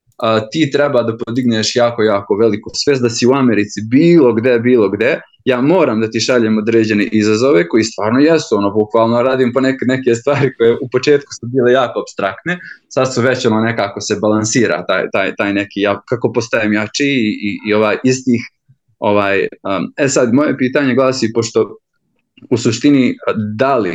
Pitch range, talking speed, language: 110-140 Hz, 175 wpm, Croatian